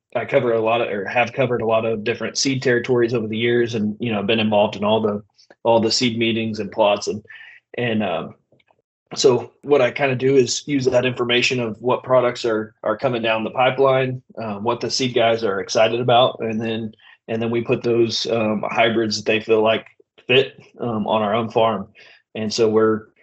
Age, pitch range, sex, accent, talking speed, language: 20-39, 110-120 Hz, male, American, 215 wpm, English